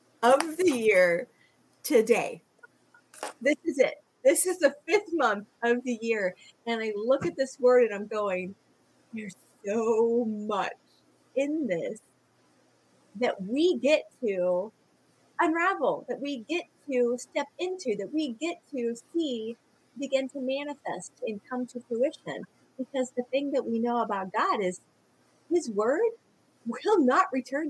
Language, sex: English, female